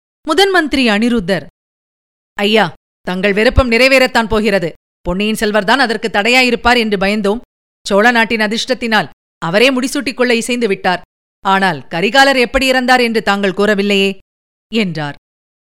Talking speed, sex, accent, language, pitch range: 110 wpm, female, native, Tamil, 195-235 Hz